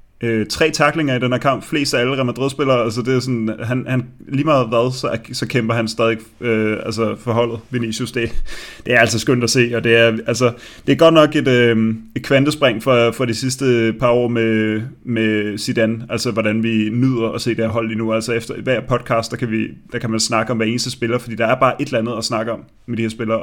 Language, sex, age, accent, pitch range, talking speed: Danish, male, 30-49, native, 115-130 Hz, 250 wpm